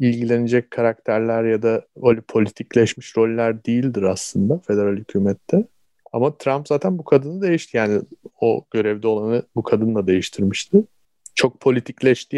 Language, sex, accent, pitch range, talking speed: Turkish, male, native, 100-125 Hz, 125 wpm